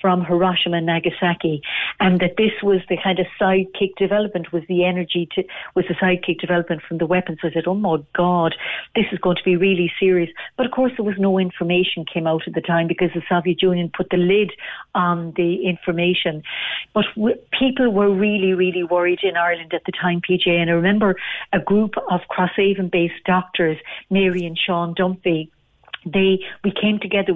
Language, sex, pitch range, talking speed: English, female, 175-205 Hz, 190 wpm